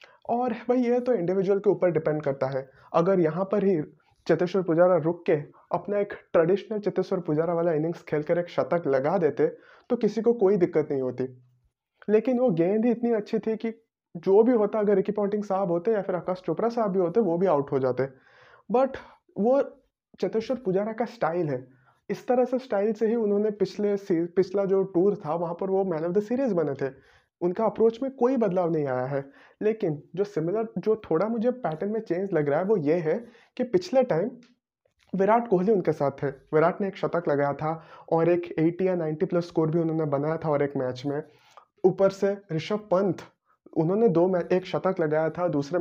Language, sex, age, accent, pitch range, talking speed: Hindi, male, 30-49, native, 160-220 Hz, 205 wpm